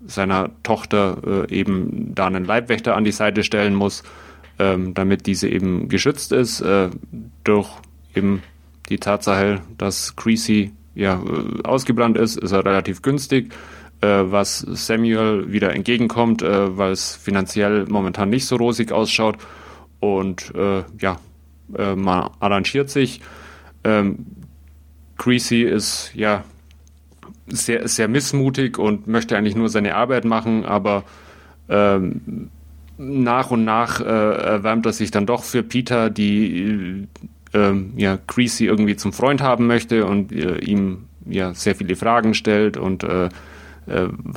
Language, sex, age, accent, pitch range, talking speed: German, male, 30-49, German, 95-110 Hz, 135 wpm